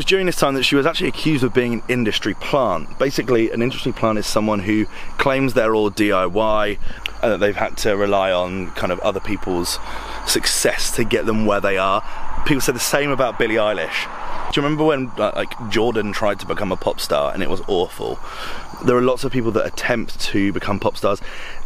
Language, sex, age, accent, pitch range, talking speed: English, male, 30-49, British, 105-130 Hz, 215 wpm